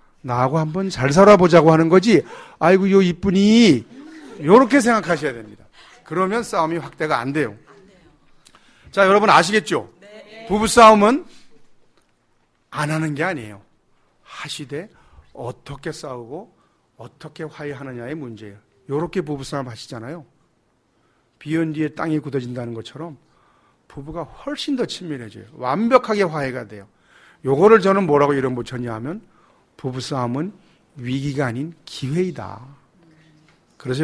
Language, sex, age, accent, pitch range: Korean, male, 40-59, native, 130-190 Hz